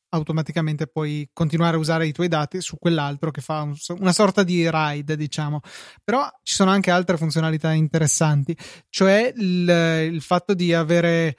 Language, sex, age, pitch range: Italian, male, 20-39, 155-180 Hz